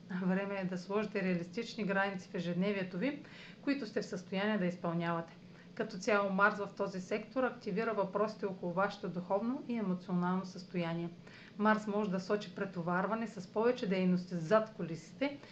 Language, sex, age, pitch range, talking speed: Bulgarian, female, 40-59, 180-215 Hz, 150 wpm